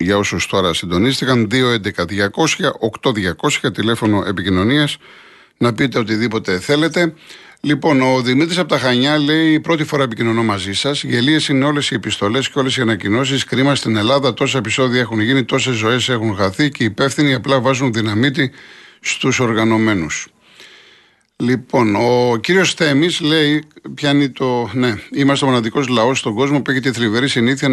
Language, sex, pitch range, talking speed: Greek, male, 110-145 Hz, 150 wpm